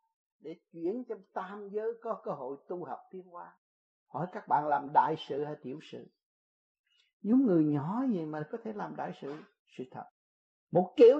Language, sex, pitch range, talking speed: Vietnamese, male, 205-300 Hz, 190 wpm